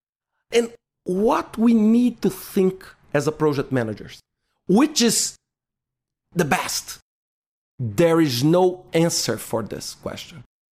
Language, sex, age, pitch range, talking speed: English, male, 40-59, 130-195 Hz, 115 wpm